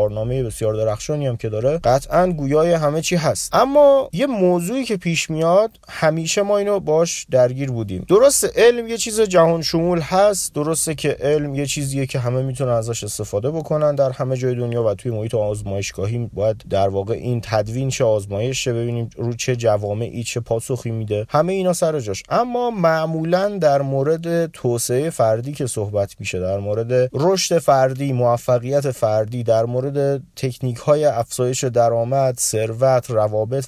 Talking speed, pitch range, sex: 160 wpm, 120-175 Hz, male